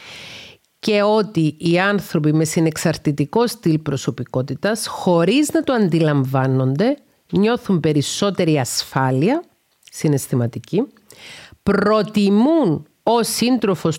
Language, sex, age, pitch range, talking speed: Greek, female, 50-69, 145-190 Hz, 80 wpm